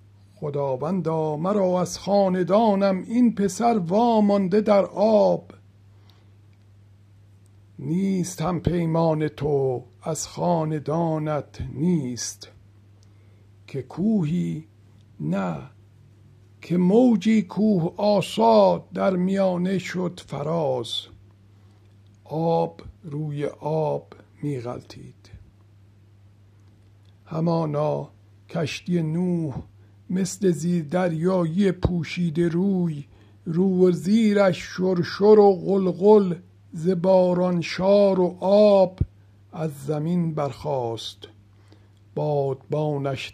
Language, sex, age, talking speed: Persian, male, 60-79, 75 wpm